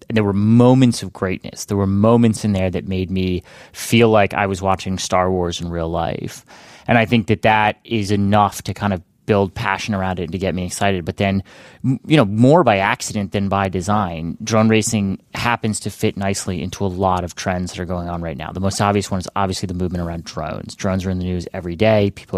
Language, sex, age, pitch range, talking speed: English, male, 30-49, 90-105 Hz, 230 wpm